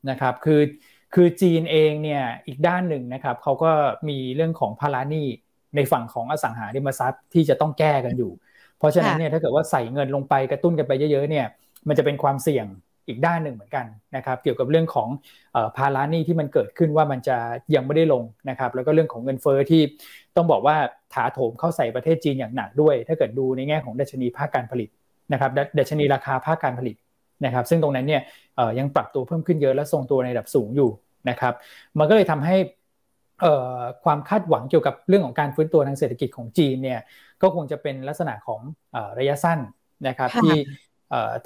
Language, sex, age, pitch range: Thai, male, 20-39, 130-160 Hz